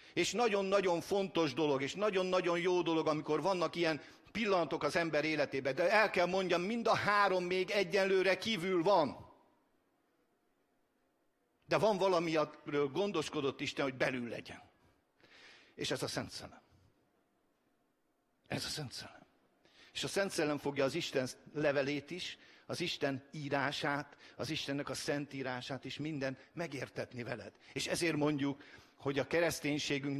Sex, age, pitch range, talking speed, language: male, 50-69, 145-185 Hz, 140 wpm, English